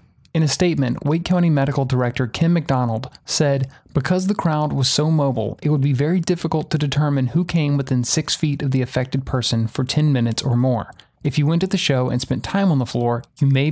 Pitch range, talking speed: 125-160 Hz, 225 wpm